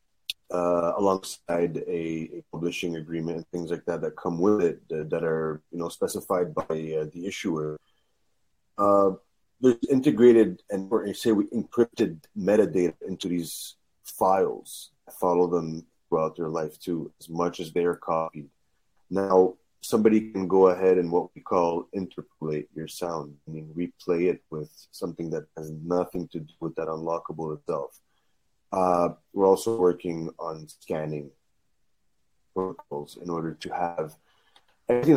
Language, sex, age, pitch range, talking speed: English, male, 30-49, 80-100 Hz, 150 wpm